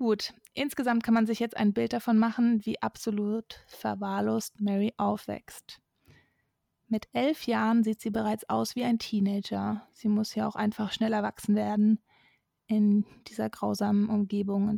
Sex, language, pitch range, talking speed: female, German, 210-230 Hz, 155 wpm